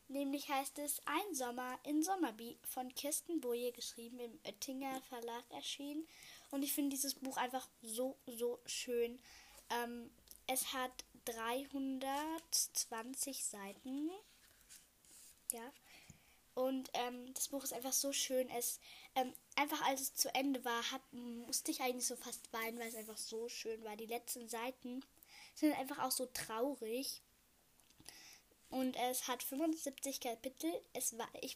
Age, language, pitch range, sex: 10-29, German, 235-275 Hz, female